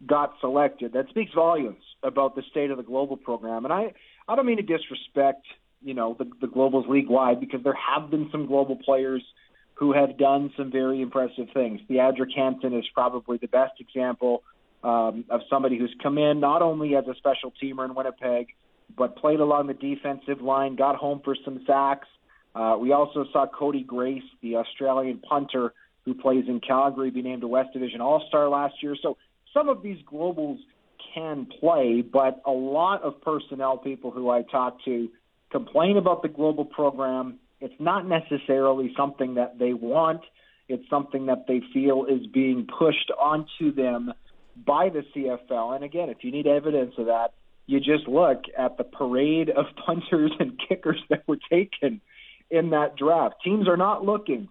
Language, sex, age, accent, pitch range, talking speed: English, male, 40-59, American, 130-150 Hz, 180 wpm